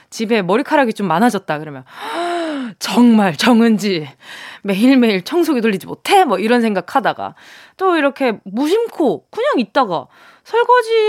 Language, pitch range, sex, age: Korean, 205-315 Hz, female, 20-39